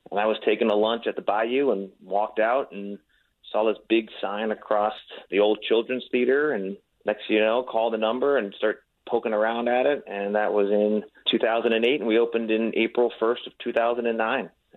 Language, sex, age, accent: English, male, 30-49, American